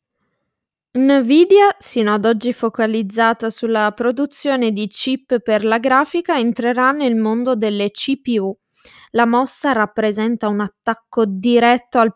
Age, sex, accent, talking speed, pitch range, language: 20-39, female, native, 120 wpm, 210-260 Hz, Italian